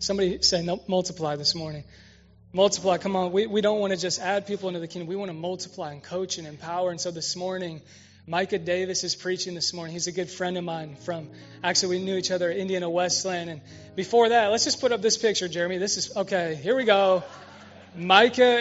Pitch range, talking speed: 165-195 Hz, 225 wpm